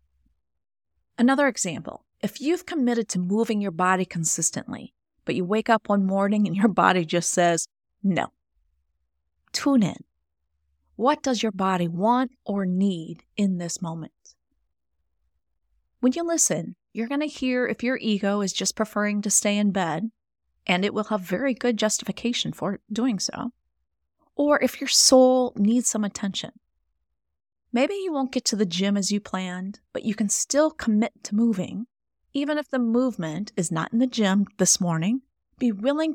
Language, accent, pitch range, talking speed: English, American, 165-230 Hz, 165 wpm